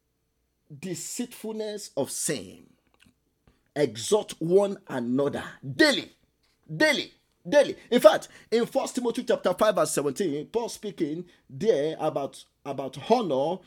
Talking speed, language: 105 wpm, English